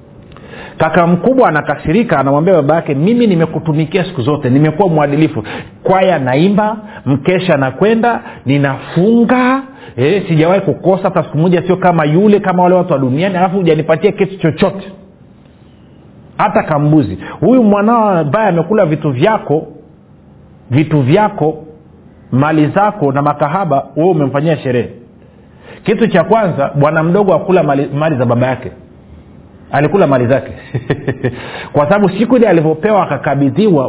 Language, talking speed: Swahili, 120 wpm